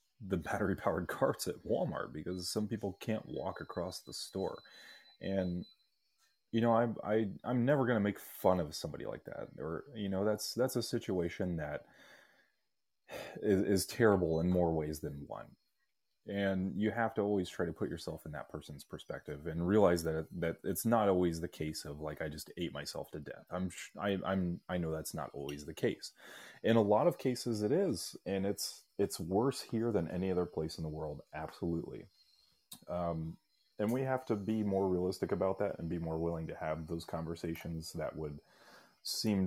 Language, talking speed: English, 190 wpm